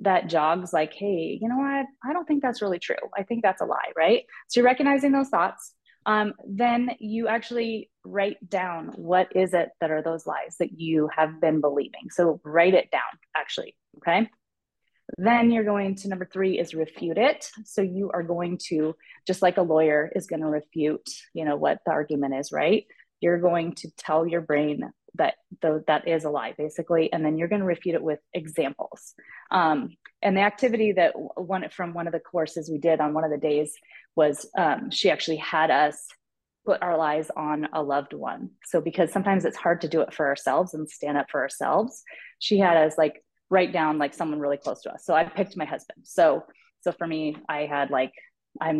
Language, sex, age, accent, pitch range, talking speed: English, female, 20-39, American, 155-200 Hz, 205 wpm